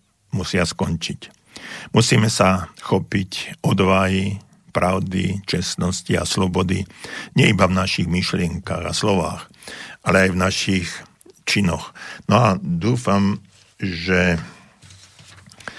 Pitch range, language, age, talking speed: 90-95 Hz, Slovak, 50-69, 100 wpm